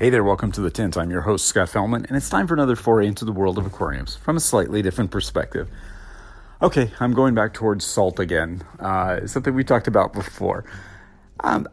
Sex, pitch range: male, 90-110 Hz